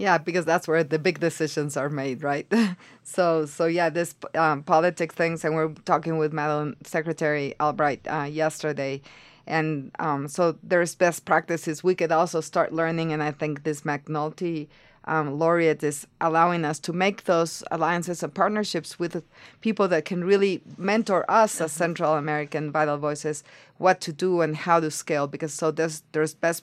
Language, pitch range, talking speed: English, 150-175 Hz, 175 wpm